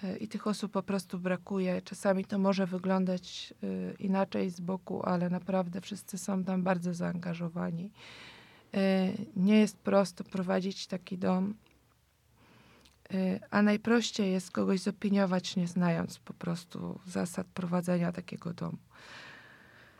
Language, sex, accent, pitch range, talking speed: Polish, female, native, 180-200 Hz, 115 wpm